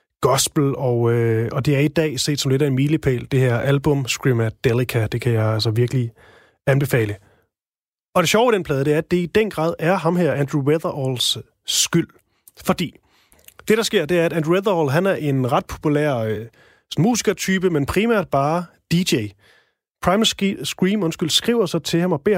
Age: 30-49